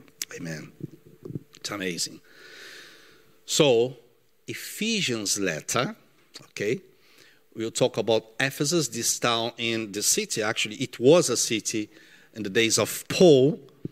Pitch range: 115-160 Hz